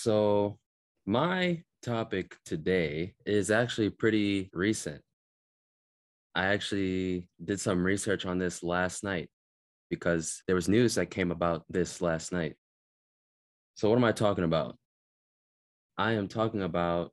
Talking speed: 130 wpm